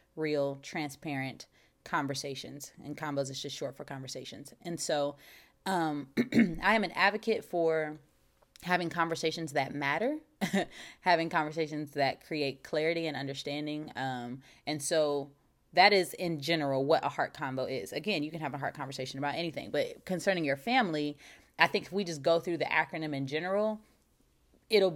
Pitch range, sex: 150-195 Hz, female